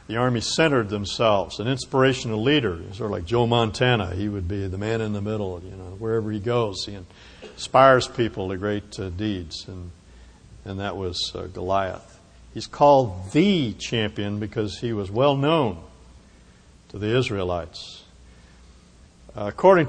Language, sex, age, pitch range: English, male, 60-79, 90-115 Hz